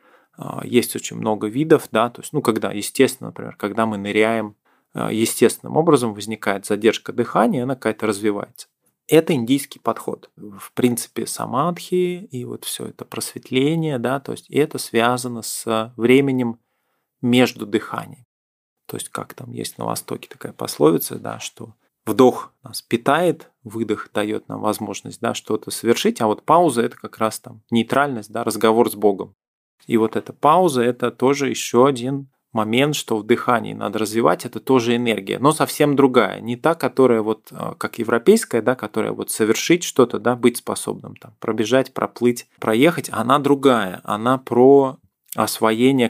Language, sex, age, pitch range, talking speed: Russian, male, 20-39, 110-135 Hz, 155 wpm